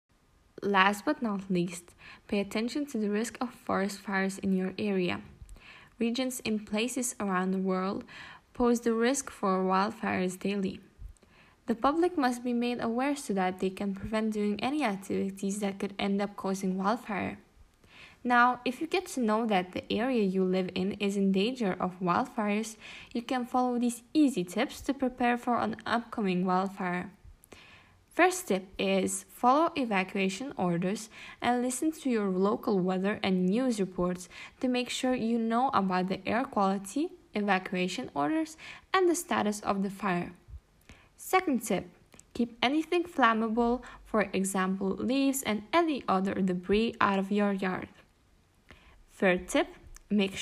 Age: 10-29